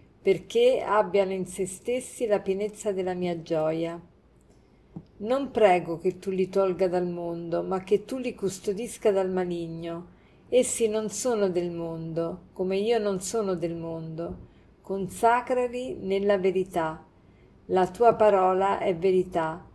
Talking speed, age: 135 wpm, 50-69